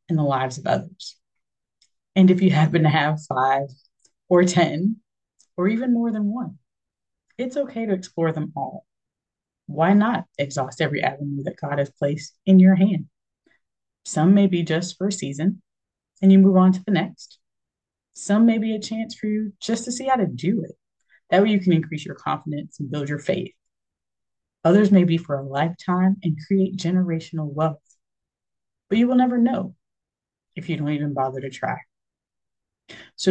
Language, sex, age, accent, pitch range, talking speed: English, female, 30-49, American, 150-200 Hz, 180 wpm